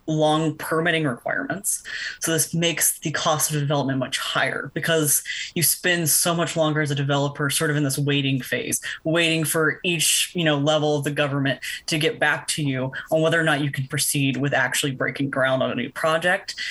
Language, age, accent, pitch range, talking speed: English, 20-39, American, 140-165 Hz, 200 wpm